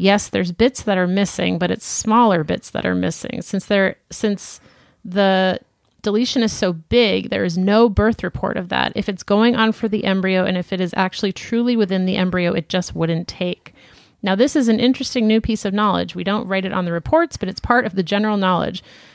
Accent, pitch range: American, 180-220 Hz